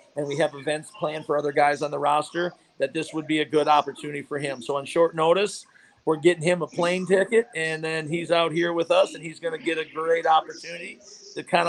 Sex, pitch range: male, 150-175 Hz